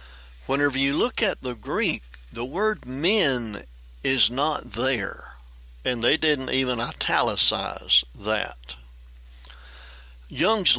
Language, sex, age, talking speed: English, male, 60-79, 105 wpm